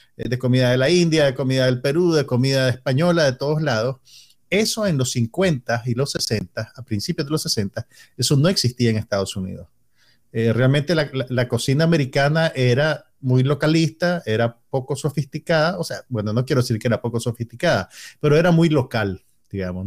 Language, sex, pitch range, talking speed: Spanish, male, 120-145 Hz, 185 wpm